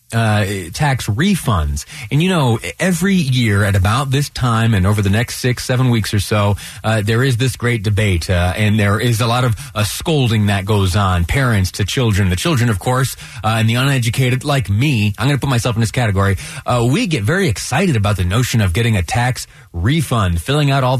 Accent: American